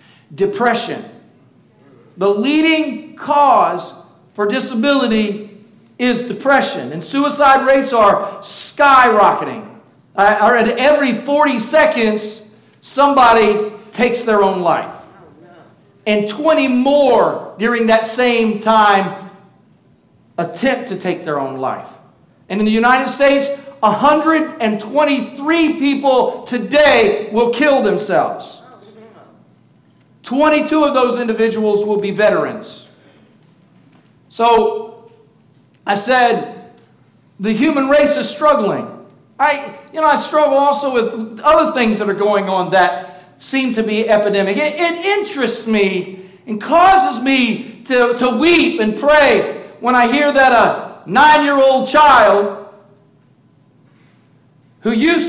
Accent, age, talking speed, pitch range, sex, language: American, 50-69, 105 wpm, 205-280 Hz, male, English